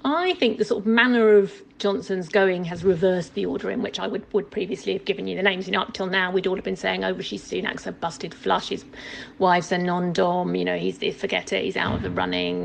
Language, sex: English, female